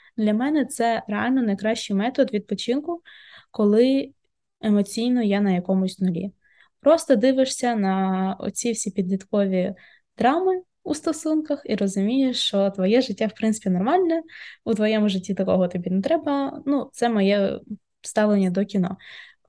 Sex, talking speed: female, 130 wpm